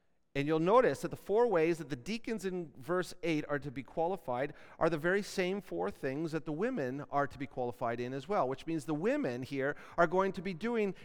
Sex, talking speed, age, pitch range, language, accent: male, 235 wpm, 40-59, 130-185 Hz, English, American